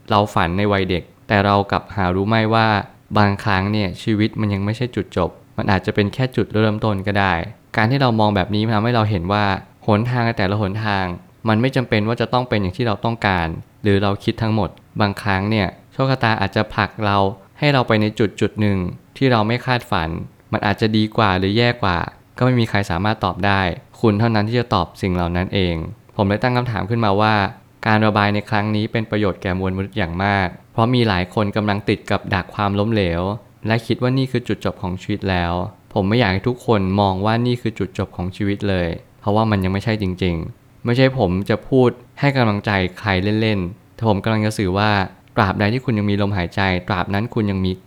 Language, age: Thai, 20-39